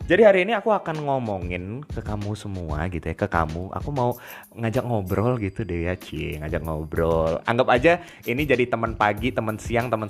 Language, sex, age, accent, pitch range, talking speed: Indonesian, male, 20-39, native, 100-165 Hz, 185 wpm